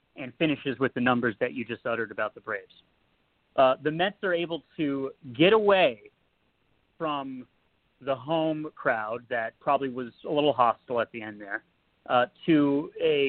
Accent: American